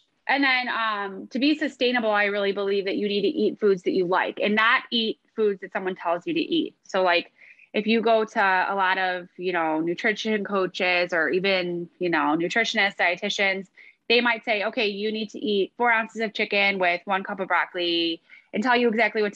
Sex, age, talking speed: female, 20-39, 215 wpm